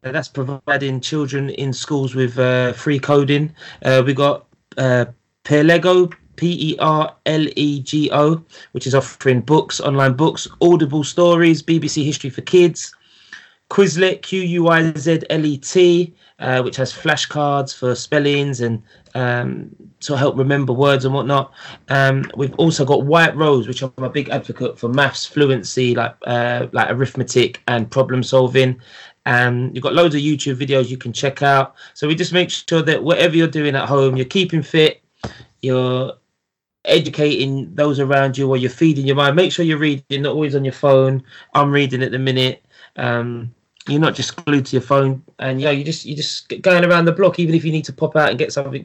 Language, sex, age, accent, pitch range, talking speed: English, male, 20-39, British, 130-155 Hz, 175 wpm